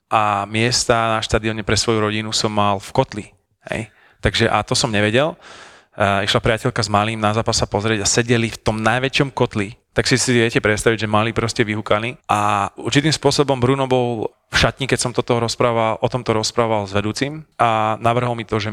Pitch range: 105-125 Hz